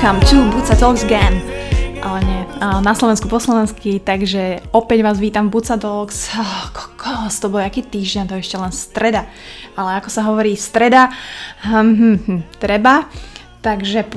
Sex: female